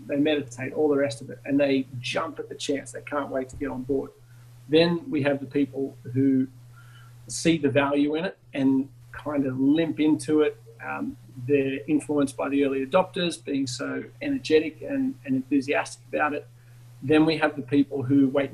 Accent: Australian